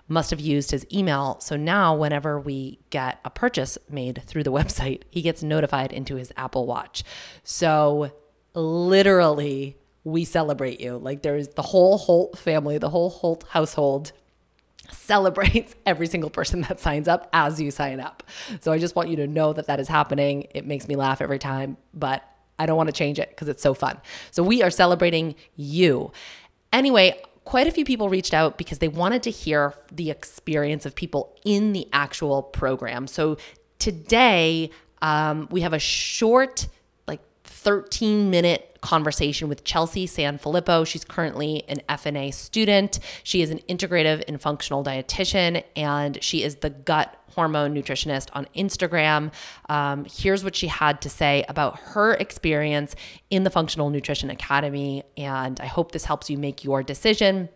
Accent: American